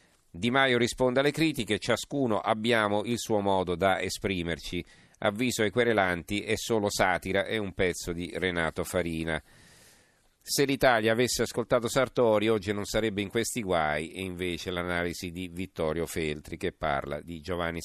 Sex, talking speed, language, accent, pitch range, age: male, 150 wpm, Italian, native, 85-110 Hz, 40-59